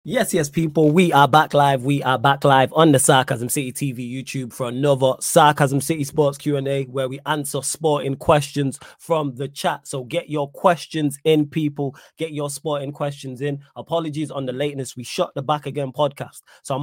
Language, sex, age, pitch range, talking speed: English, male, 20-39, 130-145 Hz, 195 wpm